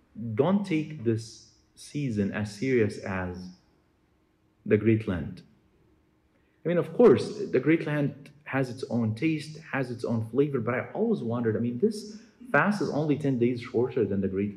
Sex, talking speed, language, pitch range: male, 170 wpm, English, 100-145 Hz